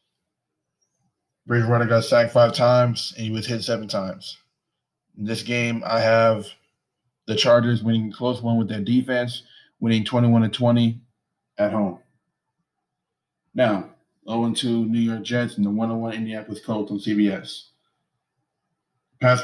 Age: 20-39